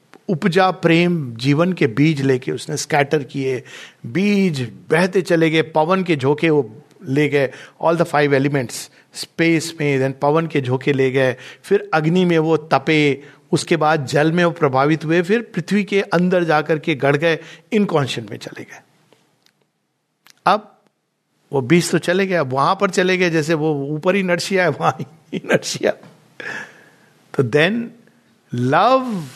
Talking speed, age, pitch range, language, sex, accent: 155 wpm, 60-79, 150-190 Hz, Hindi, male, native